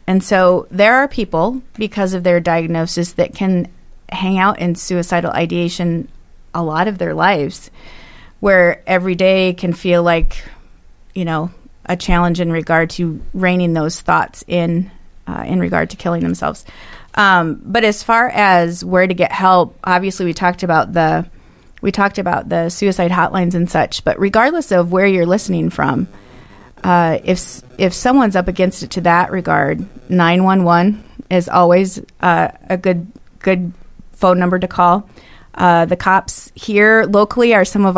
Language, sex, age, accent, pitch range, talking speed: English, female, 30-49, American, 175-195 Hz, 160 wpm